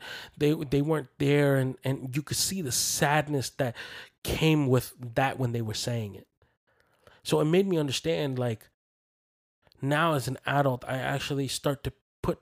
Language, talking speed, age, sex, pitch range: English, 170 wpm, 20-39, male, 120-145 Hz